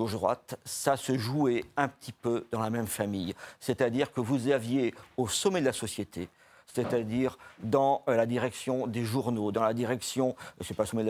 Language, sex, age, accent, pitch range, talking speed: French, male, 50-69, French, 115-145 Hz, 185 wpm